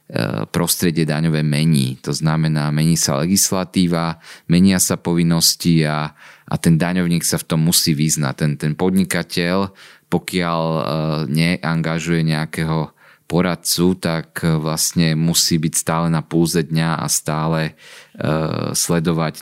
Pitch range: 80-90 Hz